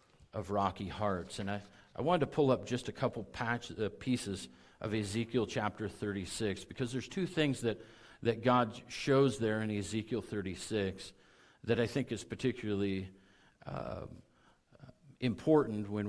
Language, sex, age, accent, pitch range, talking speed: English, male, 50-69, American, 95-125 Hz, 150 wpm